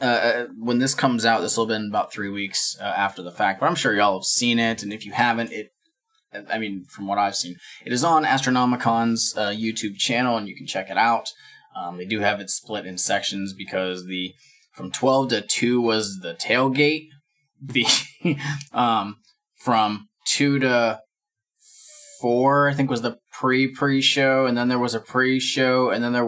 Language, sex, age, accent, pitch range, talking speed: English, male, 20-39, American, 105-130 Hz, 190 wpm